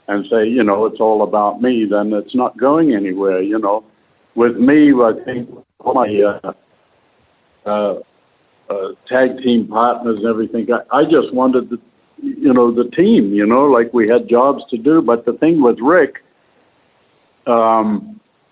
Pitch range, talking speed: 115-130 Hz, 170 wpm